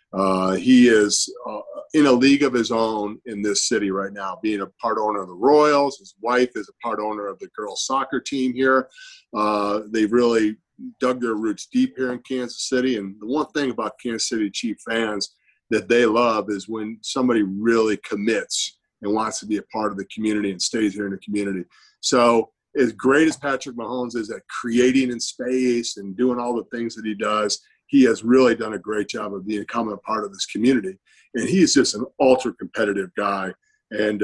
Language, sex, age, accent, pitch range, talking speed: English, male, 40-59, American, 105-130 Hz, 205 wpm